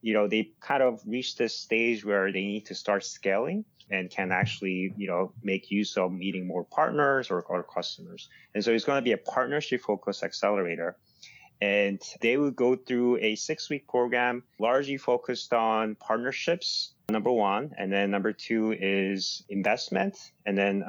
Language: English